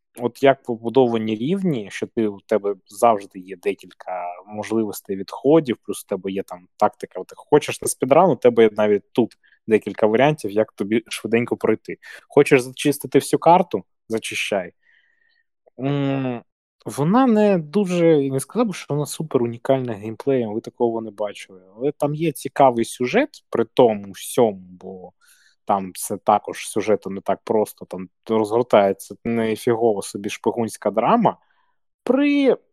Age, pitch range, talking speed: 20-39, 110-170 Hz, 145 wpm